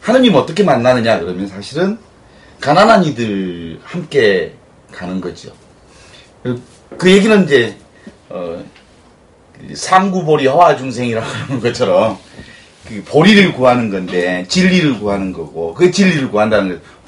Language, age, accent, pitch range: Korean, 30-49, native, 105-180 Hz